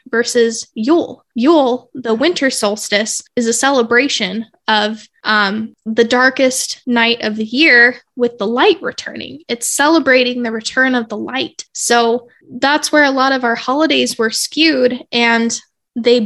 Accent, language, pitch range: American, English, 230-260 Hz